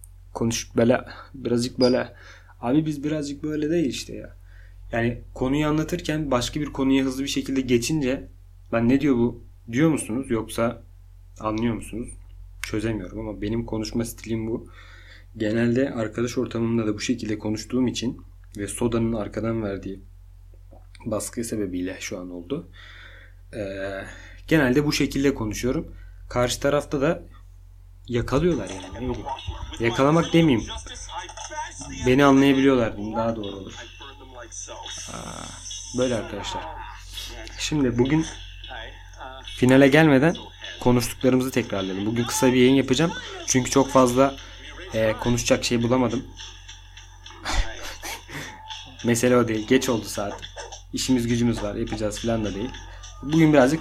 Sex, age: male, 30-49